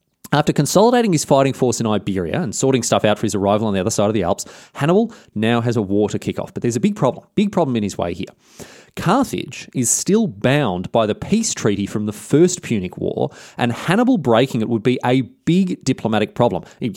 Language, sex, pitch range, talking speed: English, male, 110-145 Hz, 225 wpm